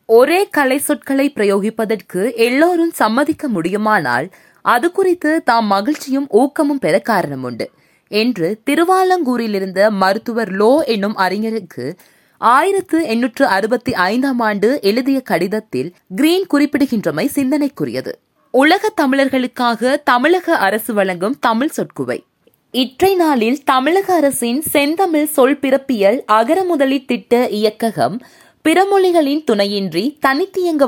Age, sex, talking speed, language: 20-39, female, 100 wpm, Tamil